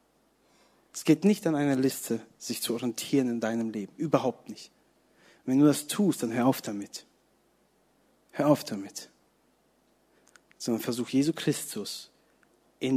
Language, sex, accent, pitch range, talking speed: German, male, German, 130-165 Hz, 145 wpm